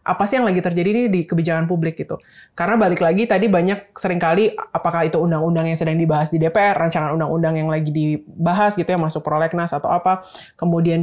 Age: 20-39